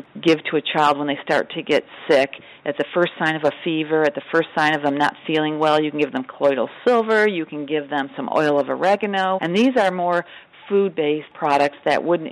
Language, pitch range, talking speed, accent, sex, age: English, 150-180 Hz, 235 wpm, American, female, 40-59